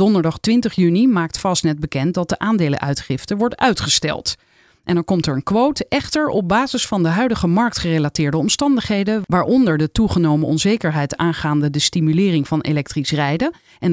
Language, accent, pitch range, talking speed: Dutch, Dutch, 155-225 Hz, 155 wpm